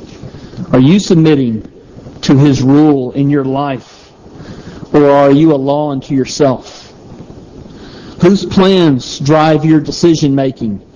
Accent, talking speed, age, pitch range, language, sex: American, 115 wpm, 50-69, 140-175 Hz, English, male